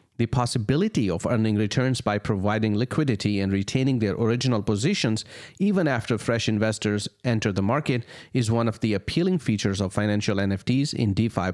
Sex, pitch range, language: male, 105-130 Hz, English